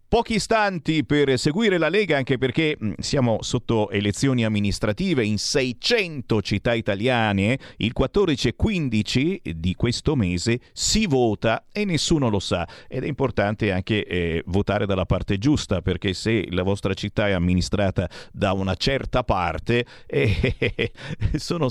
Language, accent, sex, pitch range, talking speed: Italian, native, male, 105-165 Hz, 140 wpm